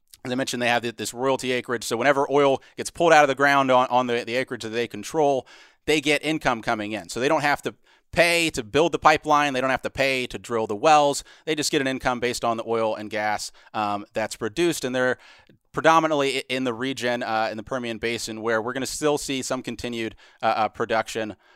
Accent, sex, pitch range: American, male, 110-135 Hz